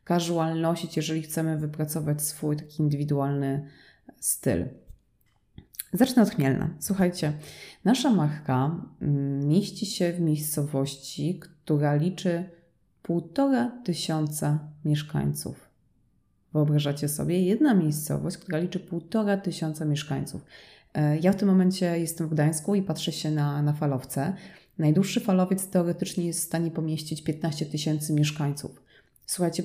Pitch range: 150-180 Hz